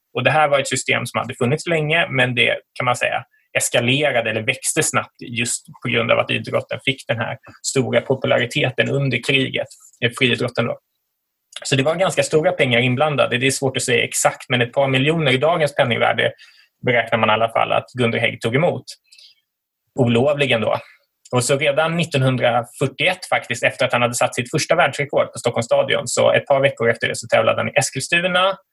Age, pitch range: 20-39, 125-150 Hz